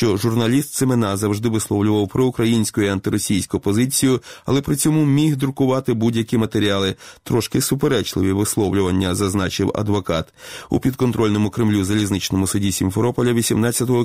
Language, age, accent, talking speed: Ukrainian, 30-49, native, 120 wpm